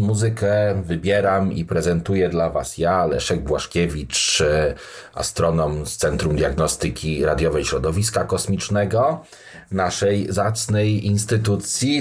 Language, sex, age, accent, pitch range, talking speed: Polish, male, 40-59, native, 90-120 Hz, 95 wpm